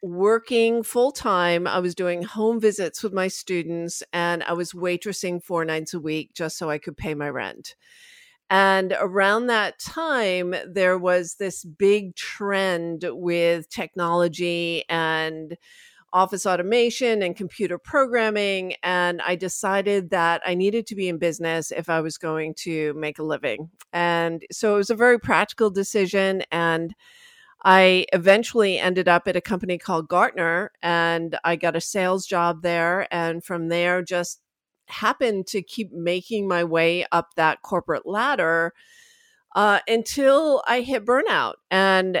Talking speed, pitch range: 150 wpm, 170-210 Hz